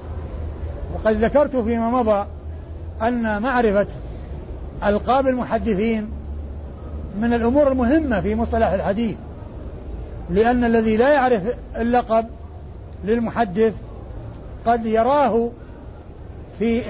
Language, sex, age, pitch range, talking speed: Arabic, male, 60-79, 210-250 Hz, 80 wpm